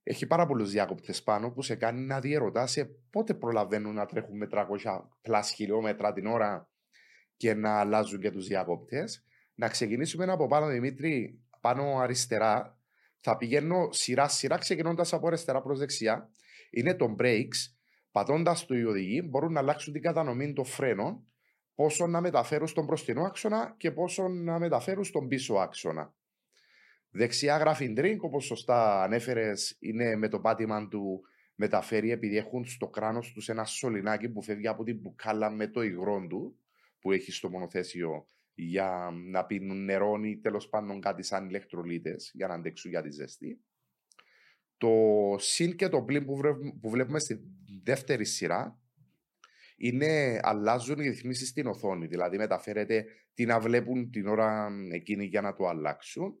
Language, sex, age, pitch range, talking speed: Greek, male, 30-49, 105-145 Hz, 155 wpm